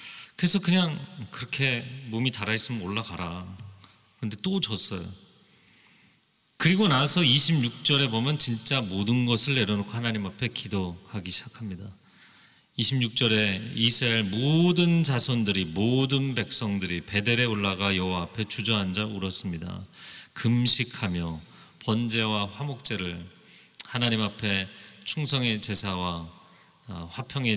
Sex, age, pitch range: male, 40-59, 100-130 Hz